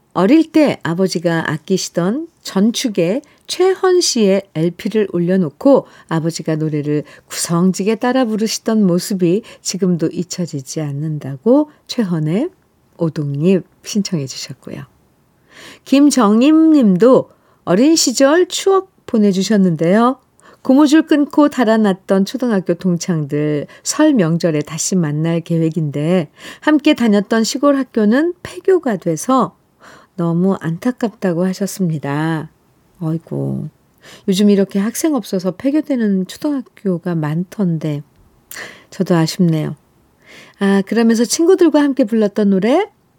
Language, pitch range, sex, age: Korean, 175-270 Hz, female, 50-69